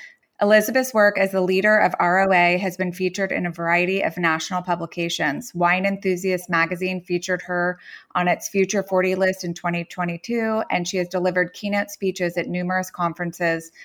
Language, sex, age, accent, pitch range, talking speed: English, female, 20-39, American, 175-195 Hz, 160 wpm